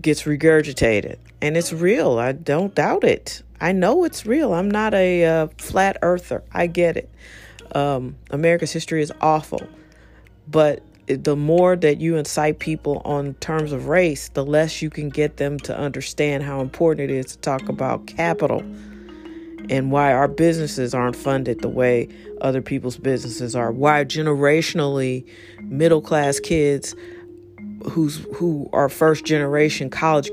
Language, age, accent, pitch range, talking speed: English, 40-59, American, 140-190 Hz, 150 wpm